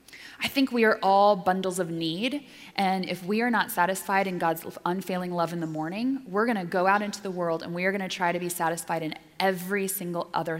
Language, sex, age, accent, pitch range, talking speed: English, female, 20-39, American, 165-205 Hz, 225 wpm